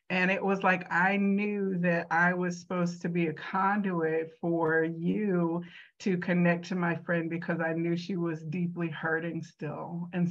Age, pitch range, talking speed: 50-69, 175-210 Hz, 175 wpm